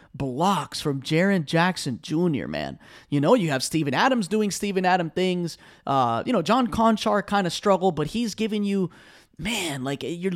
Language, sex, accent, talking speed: English, male, American, 180 wpm